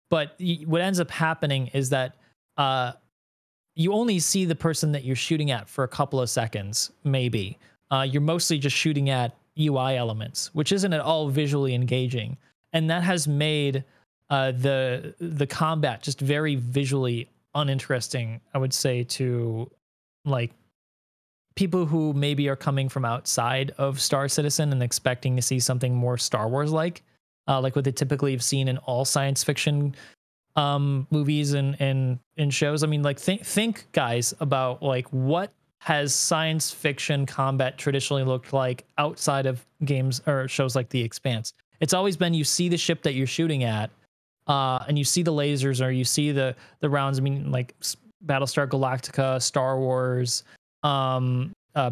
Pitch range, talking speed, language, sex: 130-150 Hz, 170 wpm, English, male